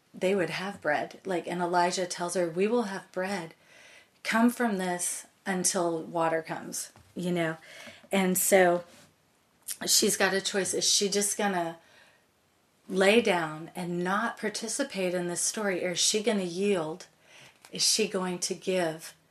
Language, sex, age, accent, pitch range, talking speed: English, female, 30-49, American, 175-210 Hz, 150 wpm